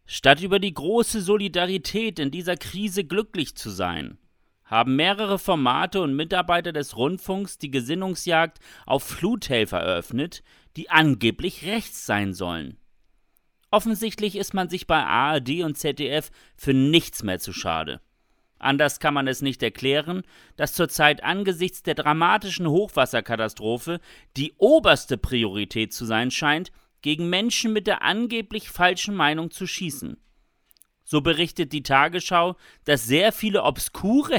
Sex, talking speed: male, 135 wpm